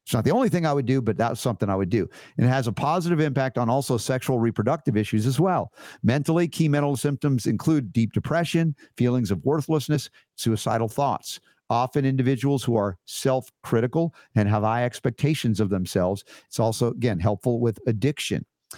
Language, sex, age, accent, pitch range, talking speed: English, male, 50-69, American, 120-155 Hz, 180 wpm